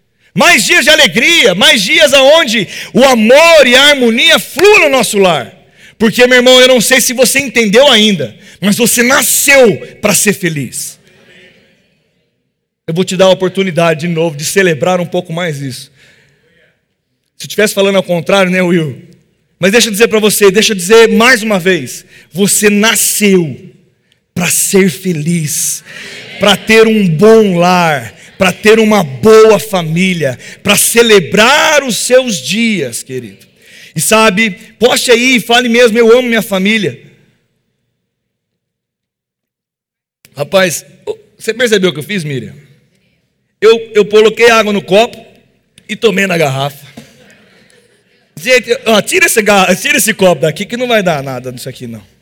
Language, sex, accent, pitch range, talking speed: Portuguese, male, Brazilian, 165-225 Hz, 150 wpm